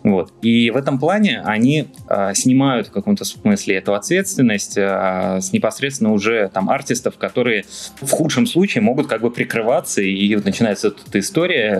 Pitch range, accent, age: 100-155 Hz, native, 20-39